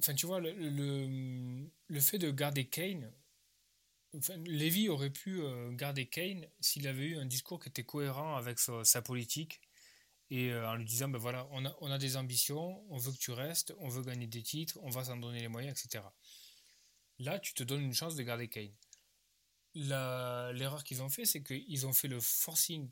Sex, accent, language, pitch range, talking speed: male, French, French, 115-150 Hz, 200 wpm